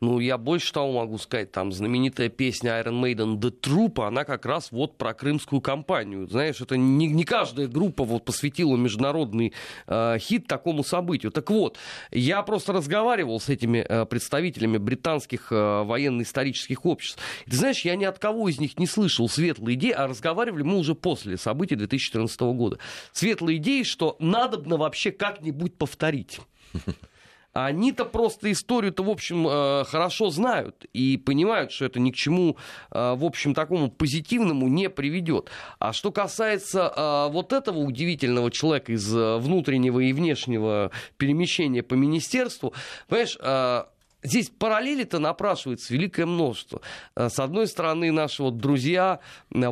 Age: 30-49